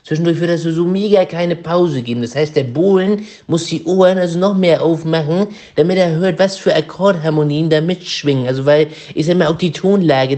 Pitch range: 135-180 Hz